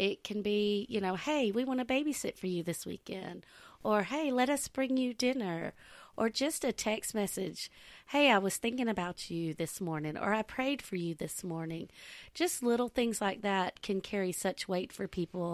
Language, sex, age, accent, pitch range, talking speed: English, female, 40-59, American, 175-230 Hz, 200 wpm